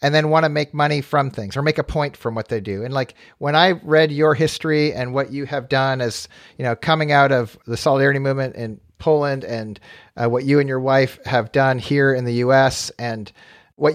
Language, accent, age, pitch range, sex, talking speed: English, American, 40-59, 130-155 Hz, male, 235 wpm